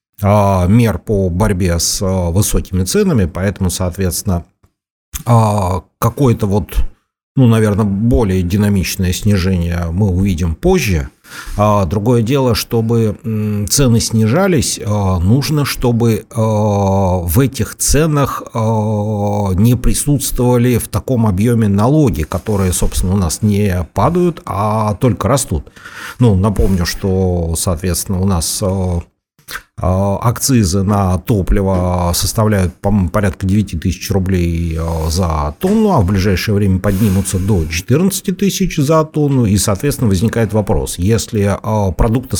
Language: Russian